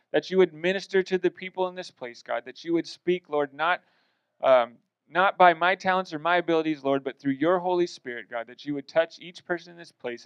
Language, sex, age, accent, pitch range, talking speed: English, male, 30-49, American, 130-170 Hz, 240 wpm